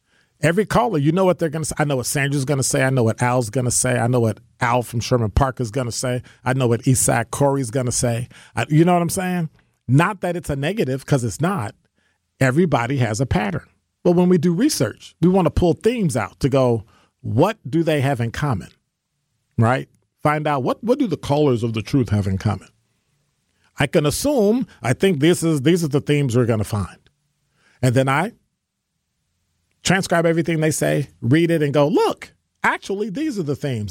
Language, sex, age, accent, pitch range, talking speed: English, male, 40-59, American, 115-160 Hz, 220 wpm